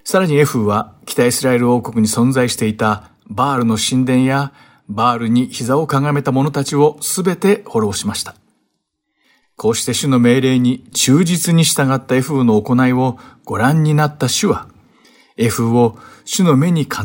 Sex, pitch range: male, 115-150 Hz